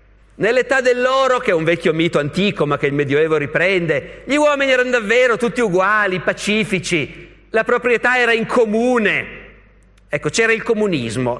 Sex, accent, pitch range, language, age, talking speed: male, native, 155-235 Hz, Italian, 50-69, 155 wpm